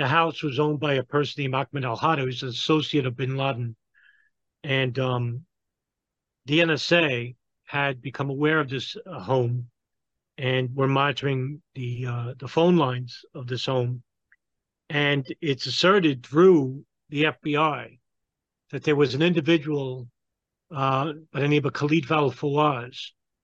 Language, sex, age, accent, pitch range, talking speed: English, male, 50-69, American, 135-160 Hz, 145 wpm